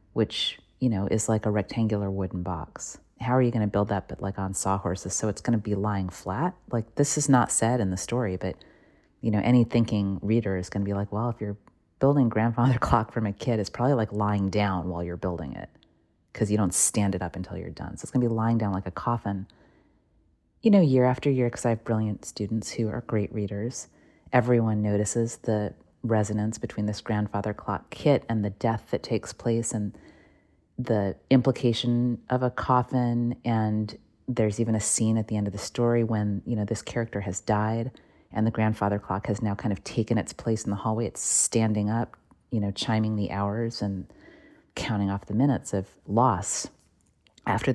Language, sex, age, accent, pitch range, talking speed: English, female, 30-49, American, 100-120 Hz, 210 wpm